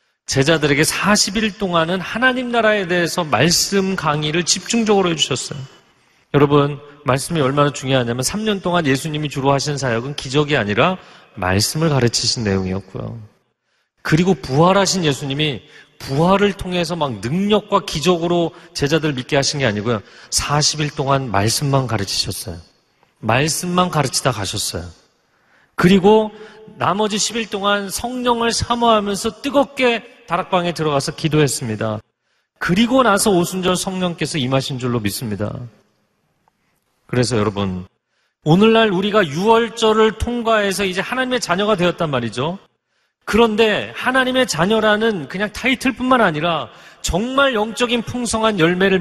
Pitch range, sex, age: 135-210 Hz, male, 40-59